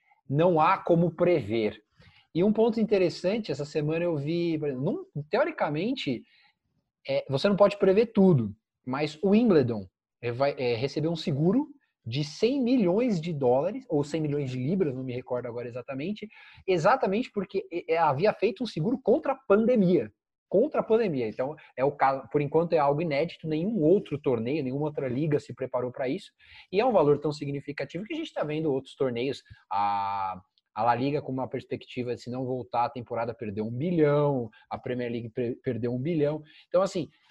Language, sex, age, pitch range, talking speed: Portuguese, male, 20-39, 135-195 Hz, 175 wpm